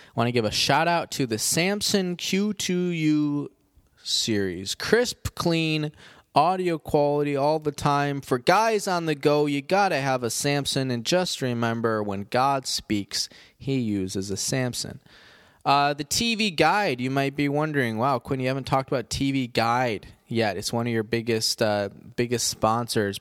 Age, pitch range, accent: 20-39, 115-145 Hz, American